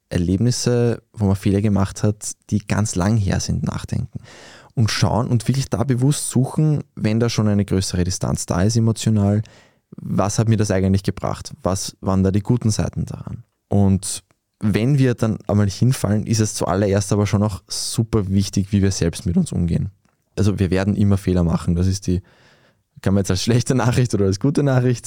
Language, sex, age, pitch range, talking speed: German, male, 20-39, 95-115 Hz, 190 wpm